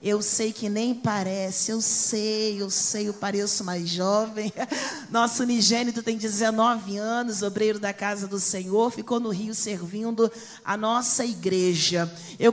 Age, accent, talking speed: 40-59, Brazilian, 150 wpm